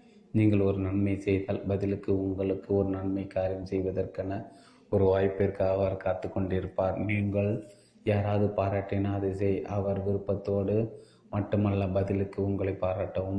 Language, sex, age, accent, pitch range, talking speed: Tamil, male, 30-49, native, 95-100 Hz, 110 wpm